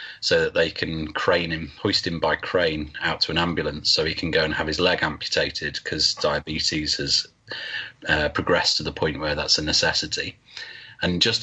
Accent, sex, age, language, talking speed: British, male, 30-49, English, 195 wpm